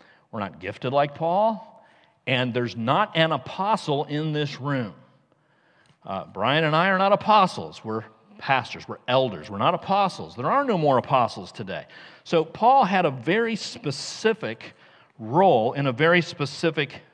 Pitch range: 135-190 Hz